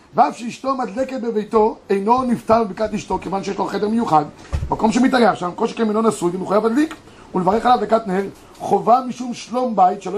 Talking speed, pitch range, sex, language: 205 wpm, 210-250 Hz, male, Hebrew